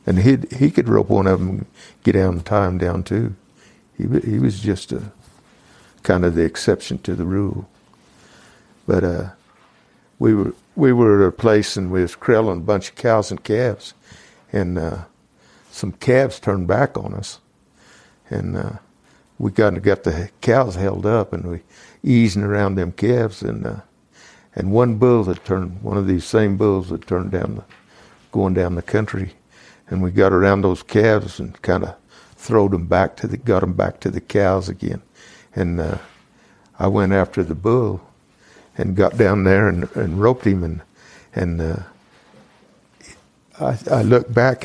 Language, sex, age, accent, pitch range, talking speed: English, male, 60-79, American, 90-110 Hz, 180 wpm